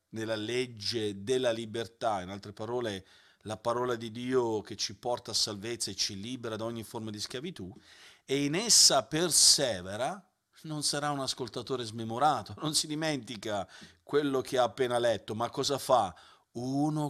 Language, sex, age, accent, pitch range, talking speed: Italian, male, 40-59, native, 120-155 Hz, 160 wpm